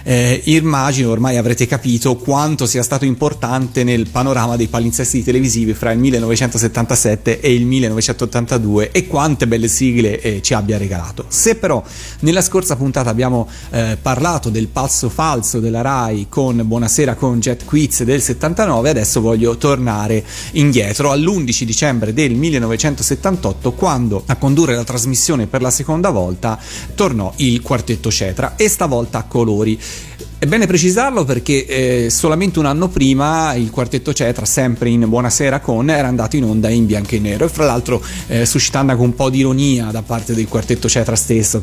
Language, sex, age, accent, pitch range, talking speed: Italian, male, 30-49, native, 115-140 Hz, 165 wpm